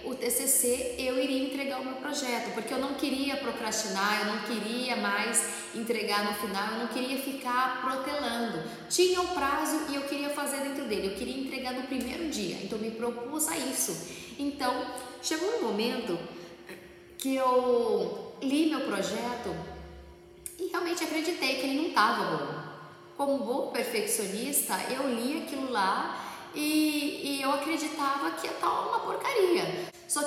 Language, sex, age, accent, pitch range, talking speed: Portuguese, female, 10-29, Brazilian, 220-280 Hz, 160 wpm